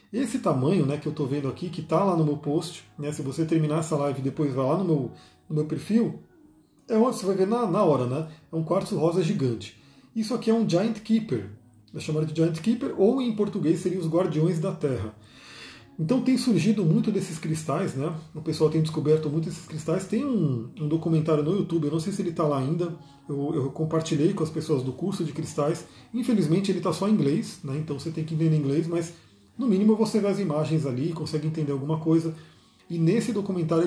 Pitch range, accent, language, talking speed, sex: 150-195 Hz, Brazilian, Portuguese, 225 wpm, male